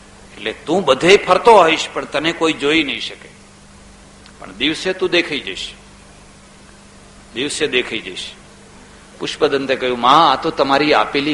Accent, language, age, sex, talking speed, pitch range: native, Gujarati, 60-79, male, 90 wpm, 155-230 Hz